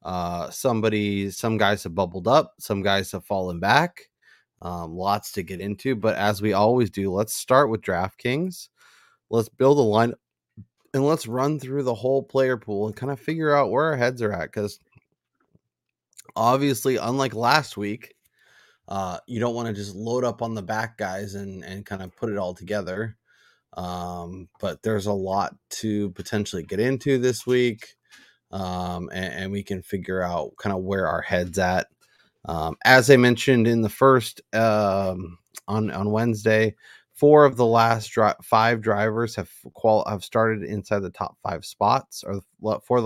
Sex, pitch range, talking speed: male, 95-120 Hz, 175 wpm